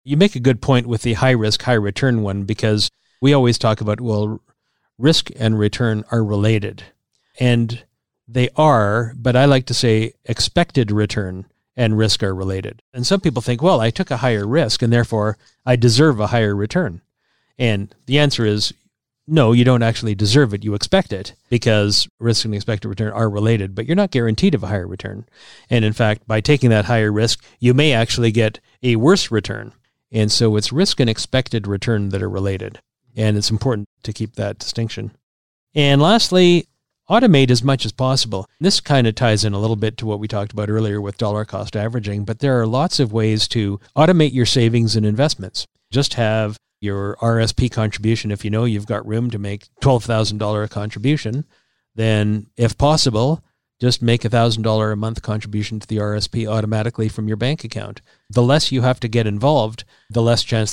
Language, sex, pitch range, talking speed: English, male, 105-125 Hz, 190 wpm